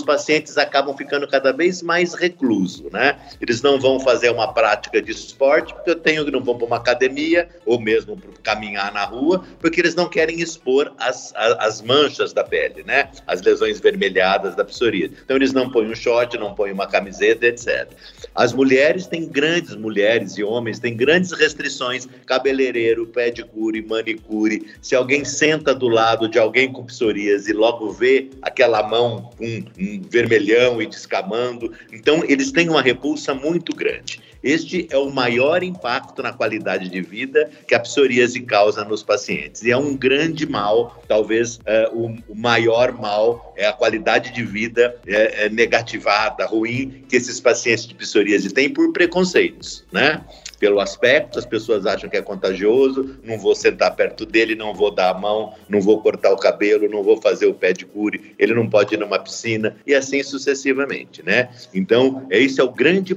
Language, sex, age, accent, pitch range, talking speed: Portuguese, male, 50-69, Brazilian, 115-170 Hz, 175 wpm